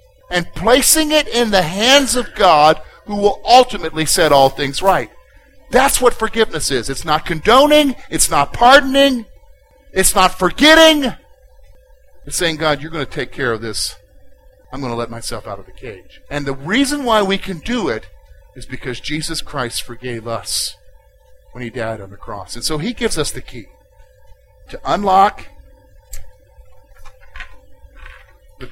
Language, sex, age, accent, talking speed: English, male, 50-69, American, 160 wpm